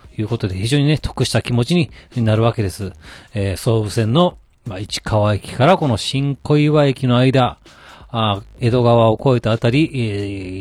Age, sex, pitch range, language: 40-59, male, 110-155 Hz, Japanese